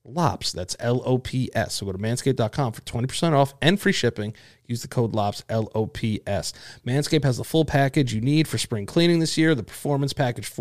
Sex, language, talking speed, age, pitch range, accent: male, English, 185 wpm, 30-49, 110-135 Hz, American